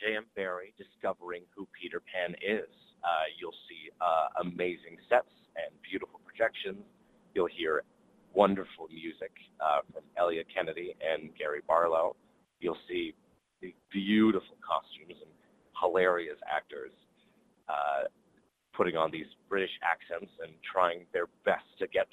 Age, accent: 30-49, American